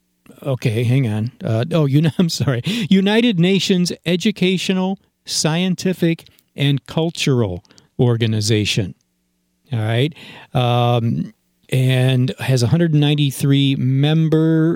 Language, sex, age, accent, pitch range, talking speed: English, male, 50-69, American, 115-160 Hz, 95 wpm